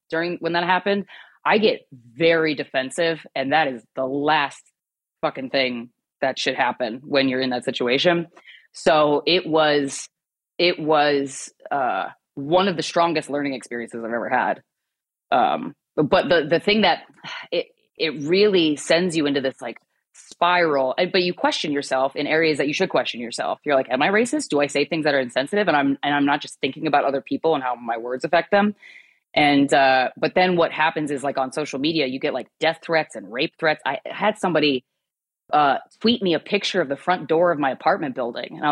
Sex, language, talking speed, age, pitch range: female, English, 200 wpm, 20-39, 140-180 Hz